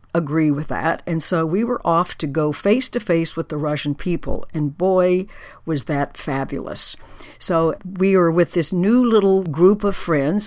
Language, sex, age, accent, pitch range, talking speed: English, female, 60-79, American, 155-195 Hz, 185 wpm